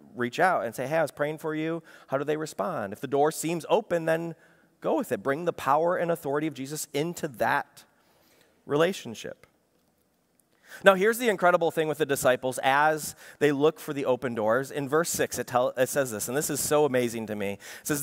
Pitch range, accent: 150-205 Hz, American